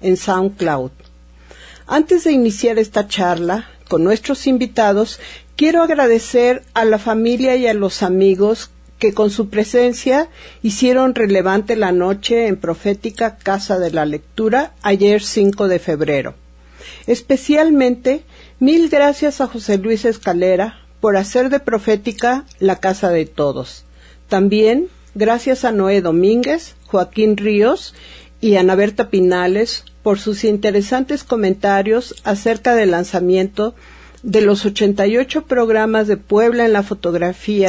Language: Spanish